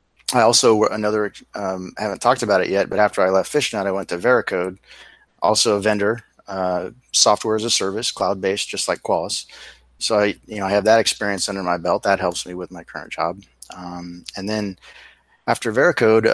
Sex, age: male, 30-49